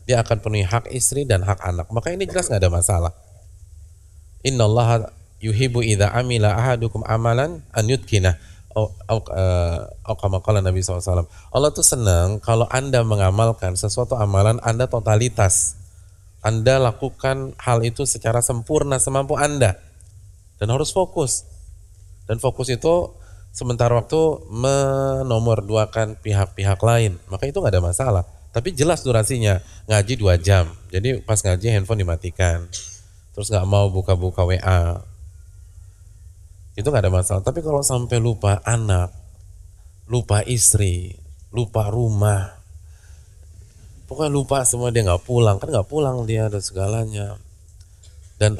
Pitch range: 90-120 Hz